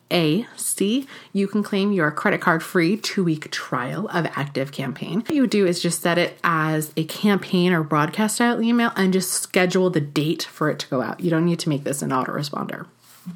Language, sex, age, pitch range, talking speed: English, female, 30-49, 160-205 Hz, 220 wpm